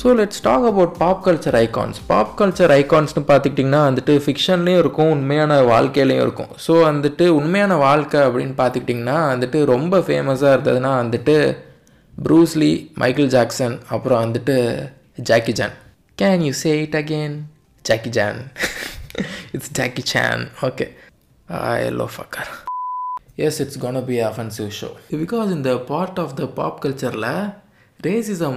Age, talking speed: 20-39, 155 wpm